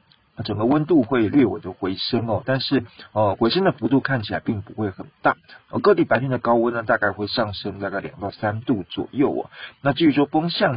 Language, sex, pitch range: Chinese, male, 105-130 Hz